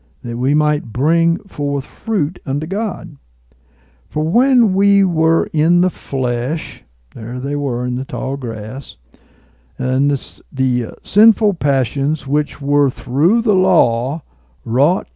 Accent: American